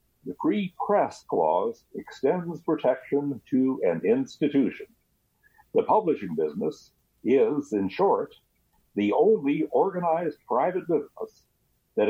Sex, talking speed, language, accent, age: male, 105 wpm, English, American, 60-79